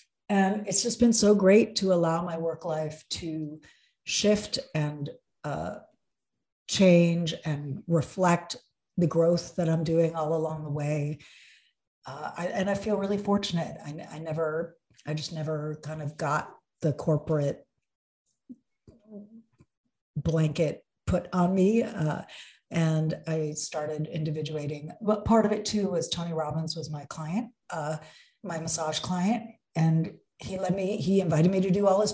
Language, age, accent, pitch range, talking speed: English, 50-69, American, 155-190 Hz, 150 wpm